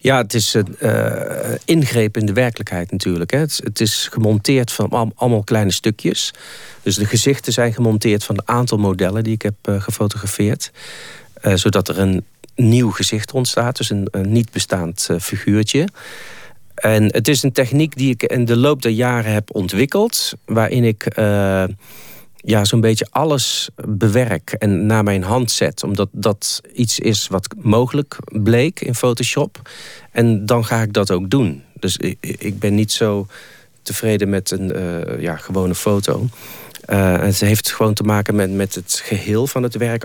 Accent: Dutch